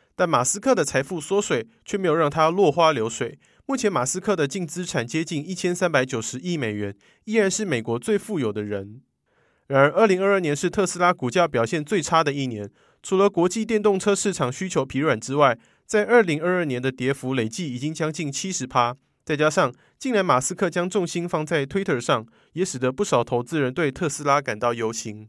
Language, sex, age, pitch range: Chinese, male, 20-39, 130-190 Hz